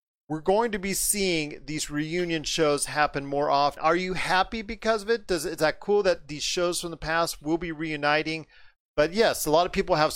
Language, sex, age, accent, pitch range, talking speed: English, male, 40-59, American, 140-180 Hz, 225 wpm